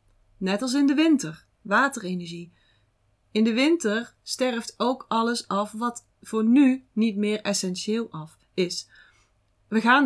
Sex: female